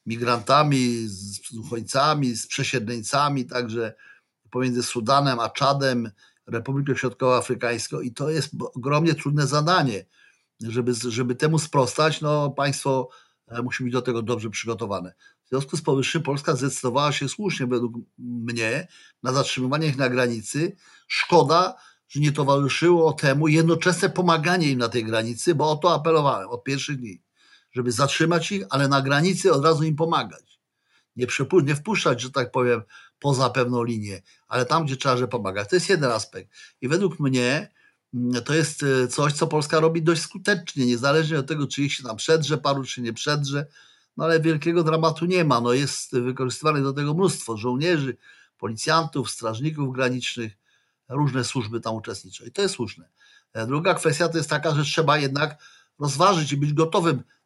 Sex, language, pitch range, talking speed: male, Polish, 125-155 Hz, 155 wpm